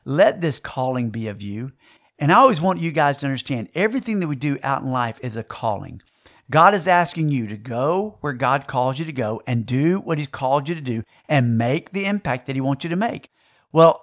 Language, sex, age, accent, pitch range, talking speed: English, male, 50-69, American, 125-170 Hz, 235 wpm